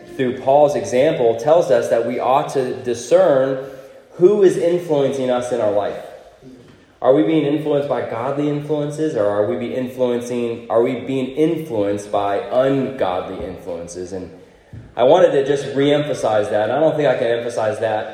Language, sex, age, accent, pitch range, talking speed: English, male, 20-39, American, 120-150 Hz, 170 wpm